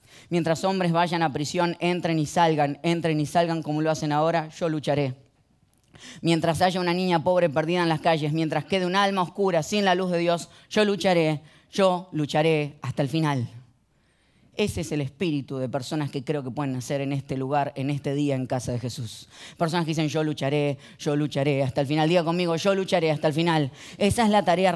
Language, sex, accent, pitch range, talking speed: Spanish, female, Argentinian, 155-215 Hz, 205 wpm